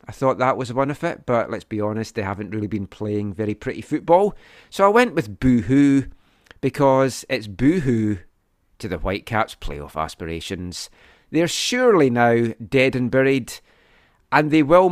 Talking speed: 165 wpm